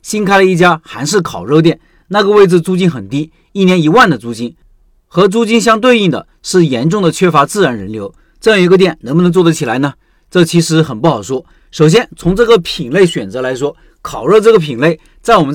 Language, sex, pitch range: Chinese, male, 155-195 Hz